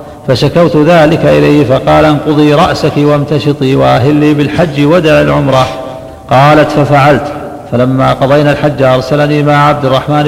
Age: 50-69